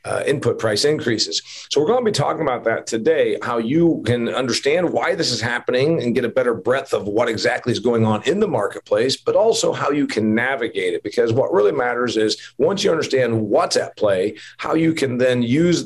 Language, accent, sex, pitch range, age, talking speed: English, American, male, 110-150 Hz, 40-59, 220 wpm